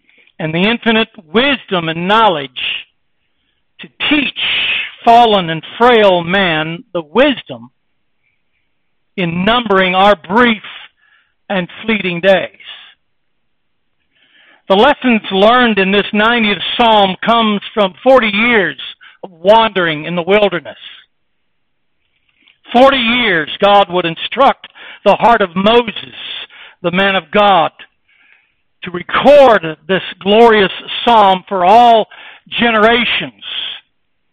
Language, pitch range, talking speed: English, 185-230 Hz, 100 wpm